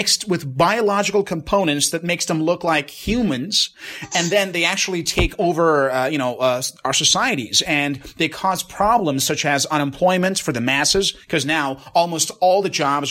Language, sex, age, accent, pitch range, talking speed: English, male, 30-49, American, 135-175 Hz, 175 wpm